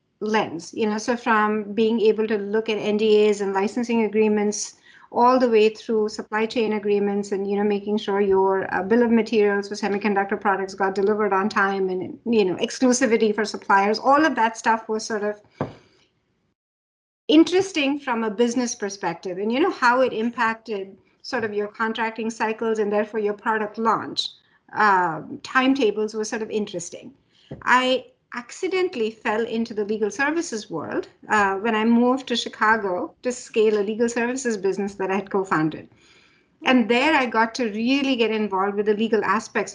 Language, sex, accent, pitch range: English, female, Indian, 210-240 Hz